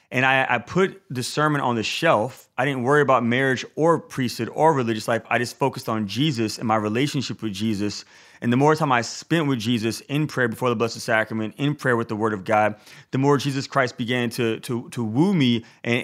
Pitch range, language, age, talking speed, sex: 115-145 Hz, English, 20-39, 225 wpm, male